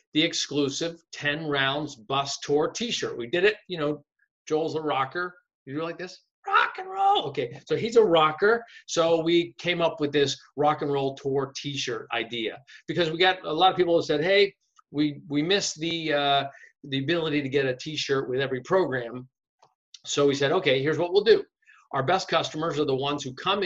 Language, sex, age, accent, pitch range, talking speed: English, male, 50-69, American, 140-195 Hz, 200 wpm